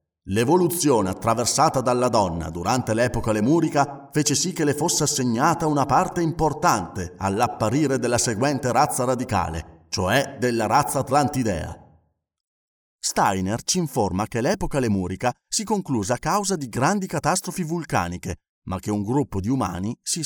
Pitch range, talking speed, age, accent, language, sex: 110-175 Hz, 135 wpm, 40-59, native, Italian, male